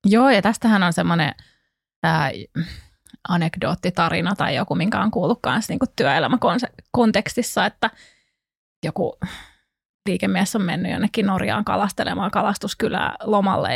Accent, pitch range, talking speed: native, 175-220 Hz, 110 wpm